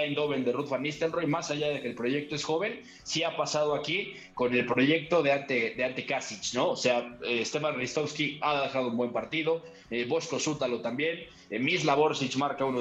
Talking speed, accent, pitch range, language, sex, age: 210 wpm, Mexican, 130-160 Hz, Spanish, male, 20-39